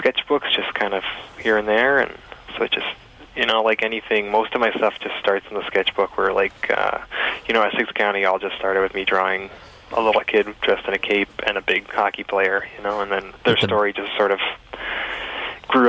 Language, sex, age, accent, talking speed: English, male, 20-39, American, 225 wpm